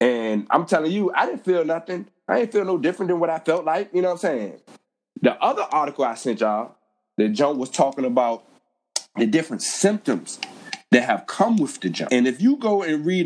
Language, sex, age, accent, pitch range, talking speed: English, male, 20-39, American, 115-170 Hz, 220 wpm